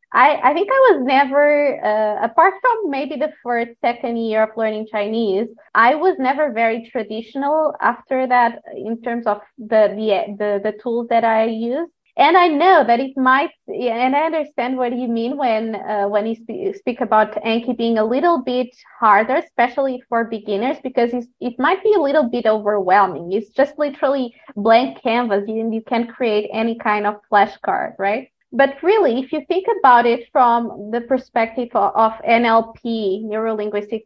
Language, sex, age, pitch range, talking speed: English, female, 20-39, 220-275 Hz, 180 wpm